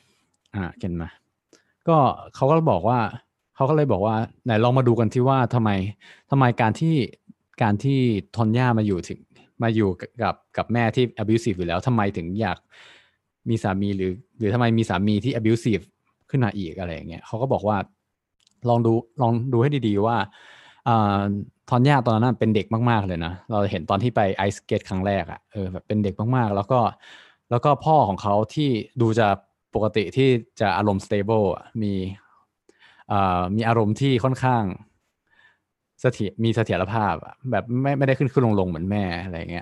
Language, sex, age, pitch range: Thai, male, 20-39, 95-120 Hz